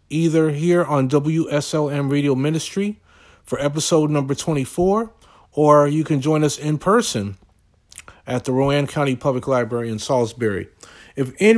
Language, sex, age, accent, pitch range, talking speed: English, male, 40-59, American, 135-165 Hz, 140 wpm